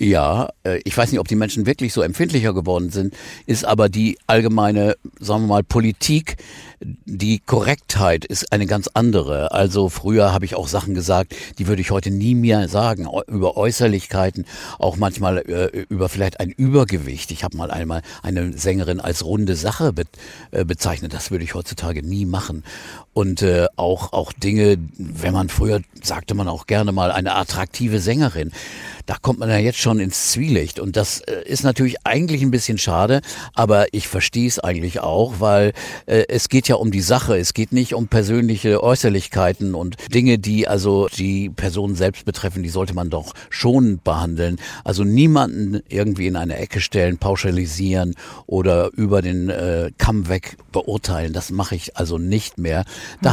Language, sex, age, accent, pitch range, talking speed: German, male, 50-69, German, 90-110 Hz, 170 wpm